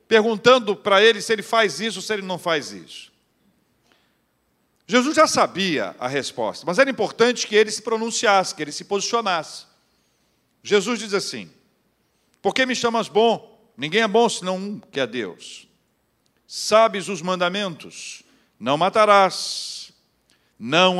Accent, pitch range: Brazilian, 180-220 Hz